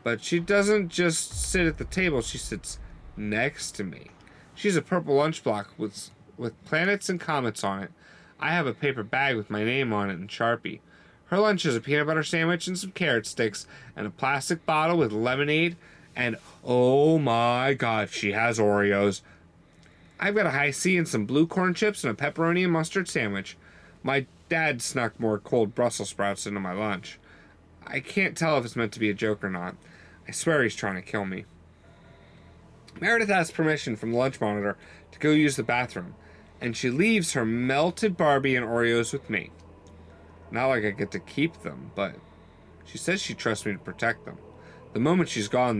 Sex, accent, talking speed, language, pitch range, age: male, American, 195 wpm, English, 105-160 Hz, 30-49